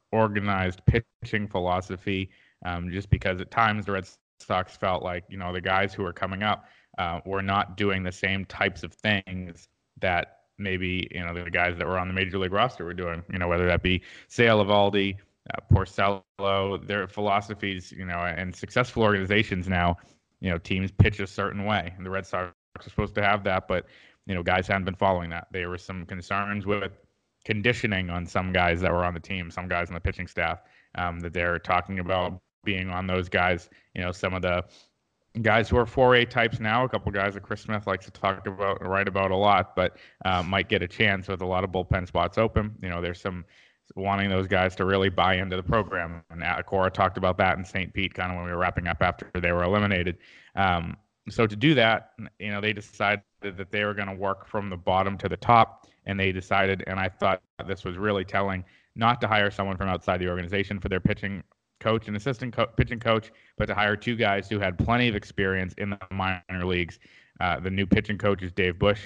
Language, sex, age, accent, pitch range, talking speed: English, male, 20-39, American, 90-105 Hz, 220 wpm